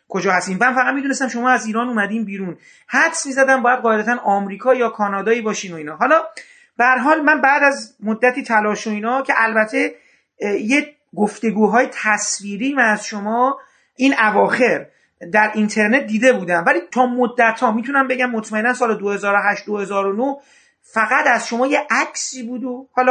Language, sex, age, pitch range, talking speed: Persian, male, 40-59, 210-265 Hz, 155 wpm